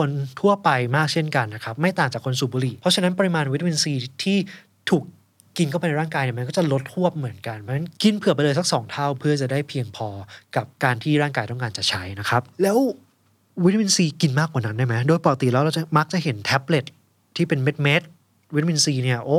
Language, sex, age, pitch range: Thai, male, 20-39, 130-175 Hz